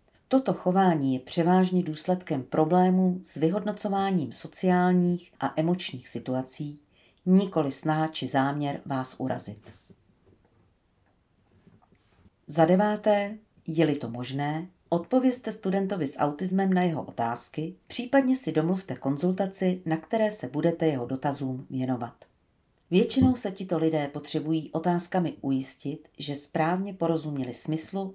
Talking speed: 110 wpm